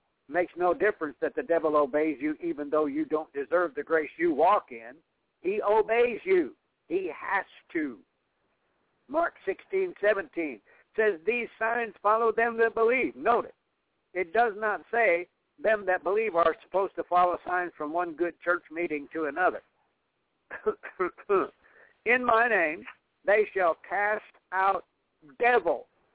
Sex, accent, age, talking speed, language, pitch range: male, American, 60-79, 140 wpm, English, 155-235 Hz